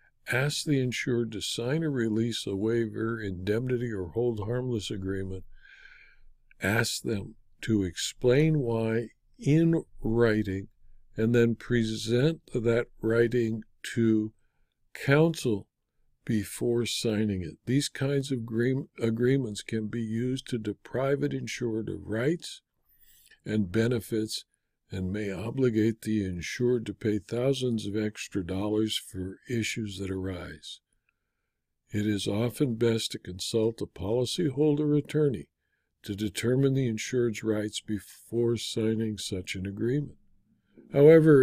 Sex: male